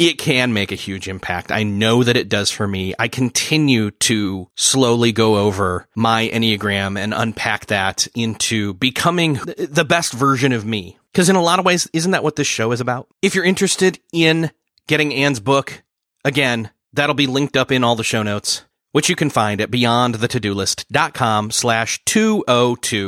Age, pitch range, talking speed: 30-49, 110-155 Hz, 180 wpm